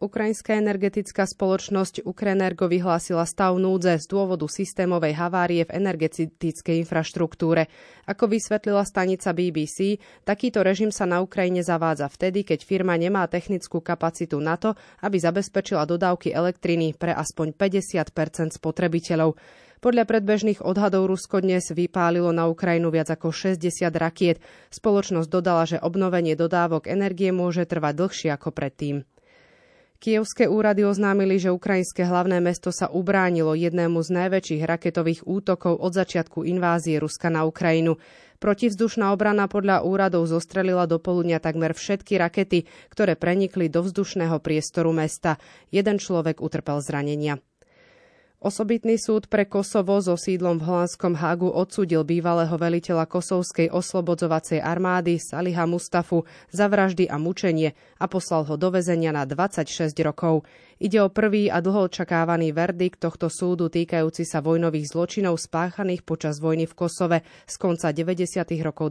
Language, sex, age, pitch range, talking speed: Slovak, female, 30-49, 165-195 Hz, 135 wpm